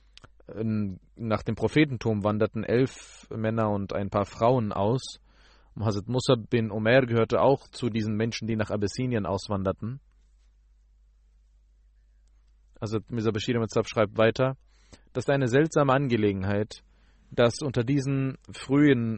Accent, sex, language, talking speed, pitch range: German, male, German, 110 wpm, 105-130 Hz